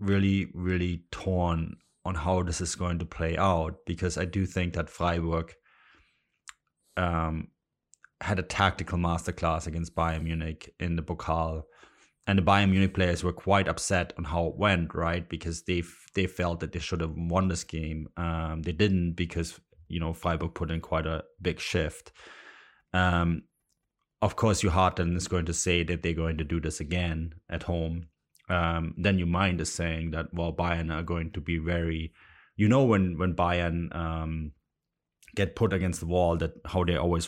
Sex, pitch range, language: male, 80-90 Hz, English